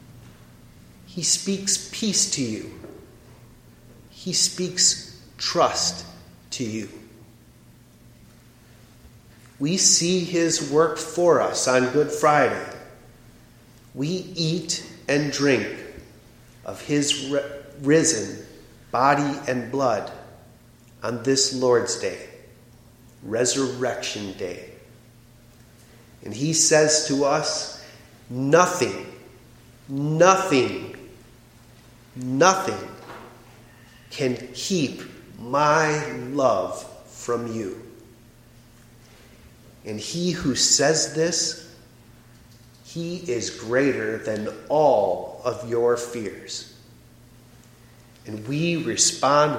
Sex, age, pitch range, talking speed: male, 40-59, 120-150 Hz, 80 wpm